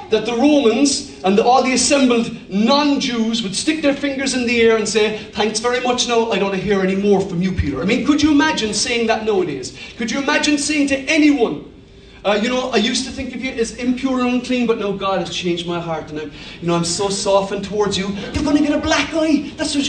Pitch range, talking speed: 195-270 Hz, 255 wpm